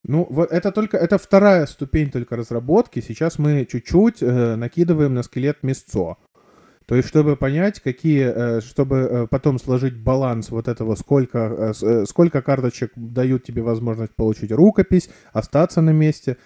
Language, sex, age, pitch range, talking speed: Russian, male, 20-39, 110-135 Hz, 140 wpm